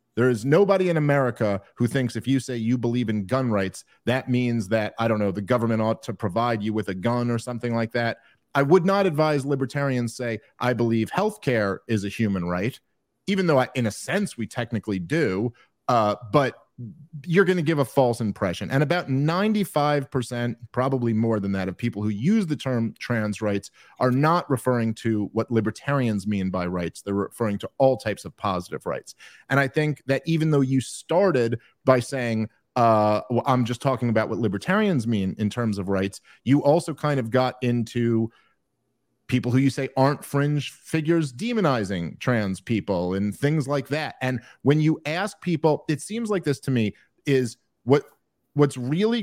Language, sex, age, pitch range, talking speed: English, male, 40-59, 110-145 Hz, 195 wpm